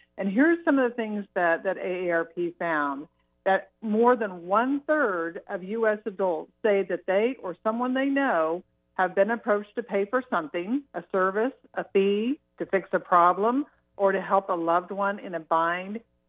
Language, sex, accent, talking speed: English, female, American, 175 wpm